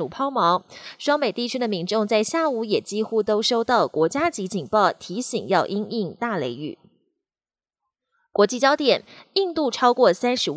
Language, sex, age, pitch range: Chinese, female, 20-39, 185-255 Hz